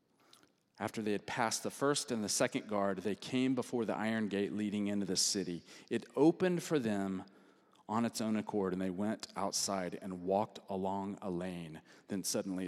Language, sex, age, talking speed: English, male, 40-59, 185 wpm